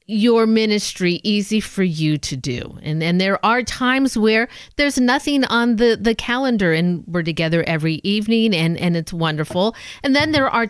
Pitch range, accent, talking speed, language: 175-235 Hz, American, 180 wpm, English